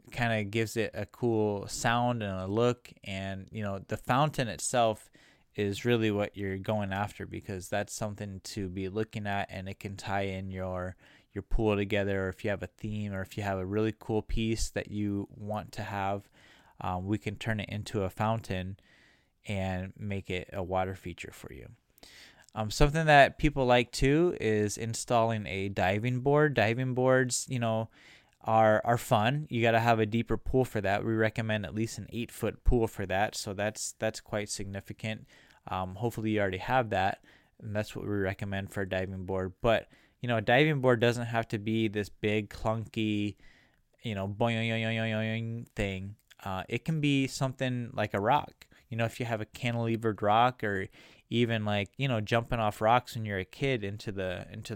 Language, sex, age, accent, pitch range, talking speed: English, male, 20-39, American, 100-115 Hz, 195 wpm